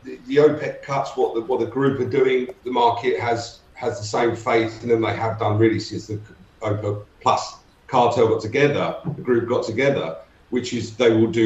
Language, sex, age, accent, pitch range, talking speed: English, male, 40-59, British, 110-140 Hz, 205 wpm